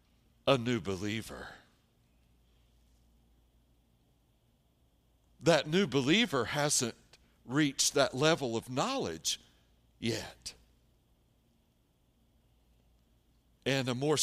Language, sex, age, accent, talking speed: English, male, 60-79, American, 65 wpm